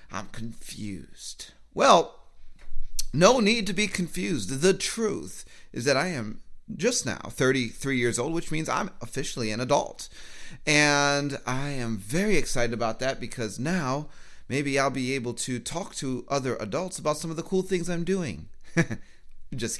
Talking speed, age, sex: 160 wpm, 30-49, male